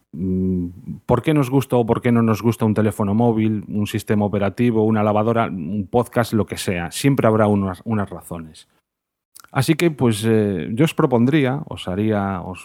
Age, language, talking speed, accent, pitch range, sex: 30-49, Spanish, 180 wpm, Spanish, 105-130 Hz, male